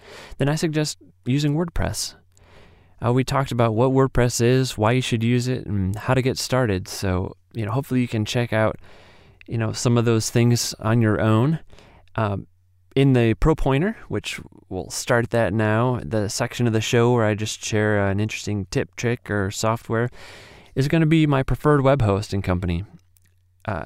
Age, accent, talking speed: 30-49, American, 190 wpm